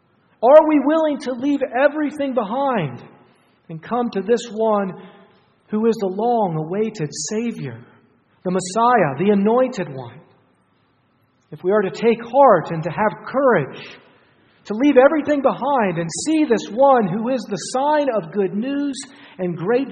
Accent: American